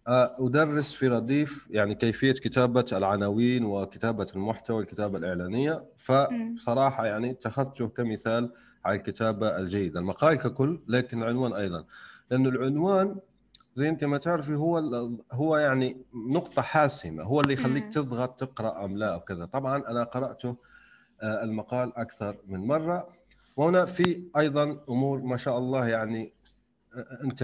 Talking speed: 125 wpm